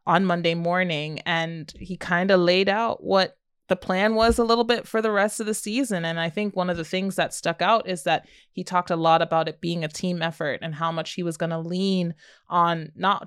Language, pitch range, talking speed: English, 165-195 Hz, 245 wpm